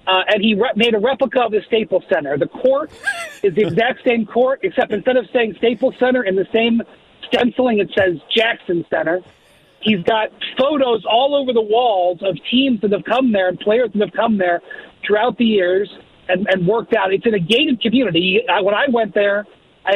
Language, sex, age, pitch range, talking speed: English, male, 40-59, 210-255 Hz, 205 wpm